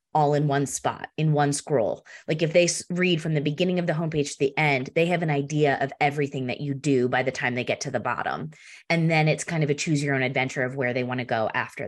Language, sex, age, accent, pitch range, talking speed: English, female, 20-39, American, 140-180 Hz, 275 wpm